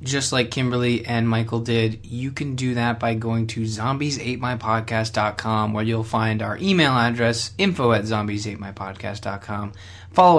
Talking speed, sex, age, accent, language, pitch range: 140 wpm, male, 20-39, American, English, 105-125 Hz